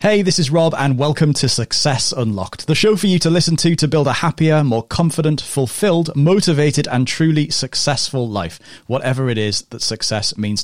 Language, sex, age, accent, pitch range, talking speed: English, male, 30-49, British, 110-150 Hz, 190 wpm